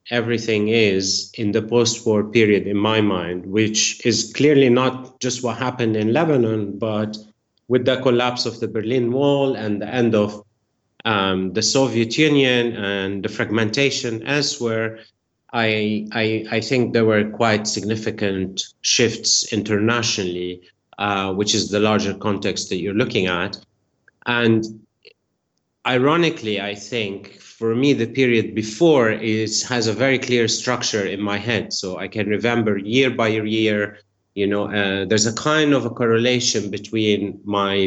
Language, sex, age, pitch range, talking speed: English, male, 30-49, 105-120 Hz, 150 wpm